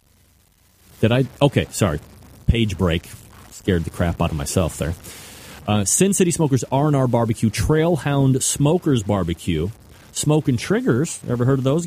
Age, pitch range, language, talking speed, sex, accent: 30-49, 100-125 Hz, English, 145 wpm, male, American